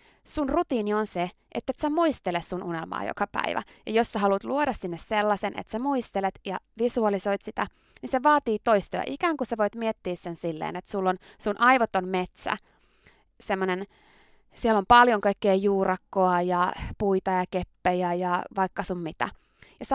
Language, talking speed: Finnish, 175 wpm